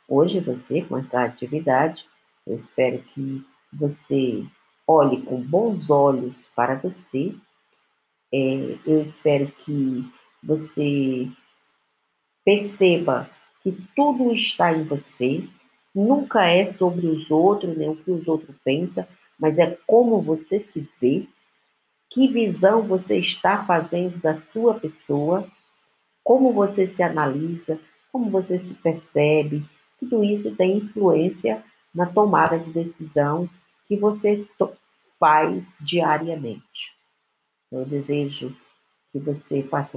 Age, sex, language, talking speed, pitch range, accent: 50-69, female, Portuguese, 115 wpm, 140-185 Hz, Brazilian